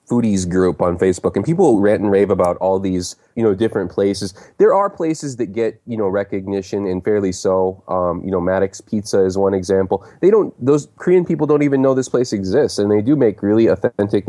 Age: 20-39